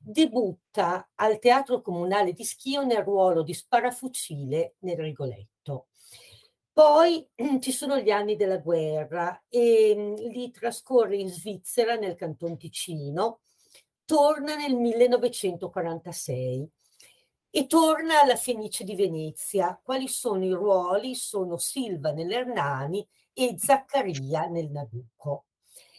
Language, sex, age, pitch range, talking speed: Italian, female, 50-69, 170-245 Hz, 110 wpm